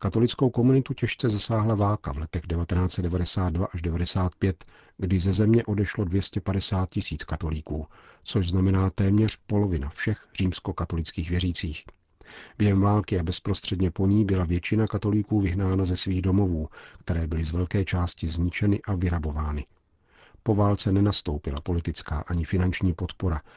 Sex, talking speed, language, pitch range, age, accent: male, 130 wpm, Czech, 85-100 Hz, 40-59, native